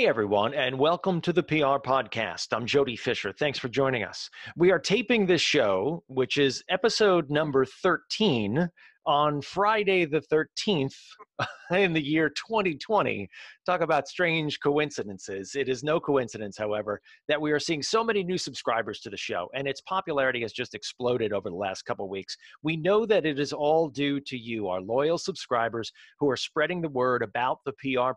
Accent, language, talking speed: American, English, 180 wpm